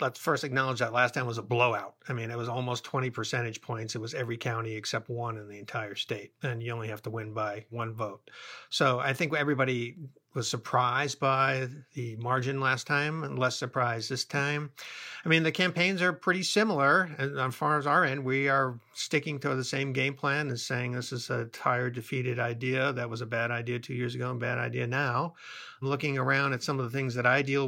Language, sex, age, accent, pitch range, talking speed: English, male, 50-69, American, 125-145 Hz, 220 wpm